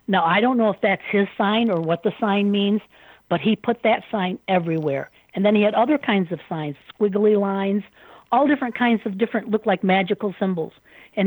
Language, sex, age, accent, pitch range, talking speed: English, female, 60-79, American, 180-225 Hz, 210 wpm